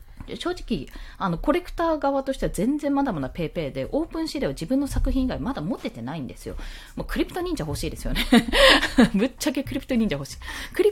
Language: Japanese